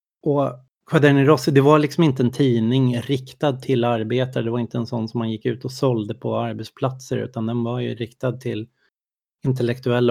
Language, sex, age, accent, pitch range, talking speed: Swedish, male, 30-49, native, 120-140 Hz, 180 wpm